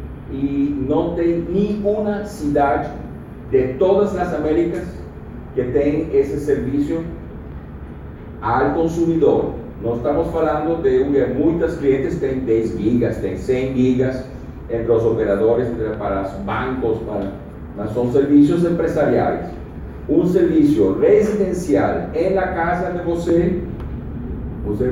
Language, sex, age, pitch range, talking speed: Portuguese, male, 40-59, 115-145 Hz, 115 wpm